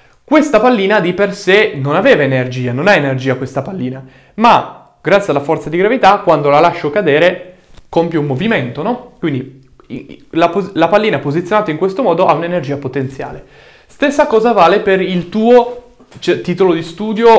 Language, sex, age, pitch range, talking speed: Italian, male, 20-39, 145-210 Hz, 160 wpm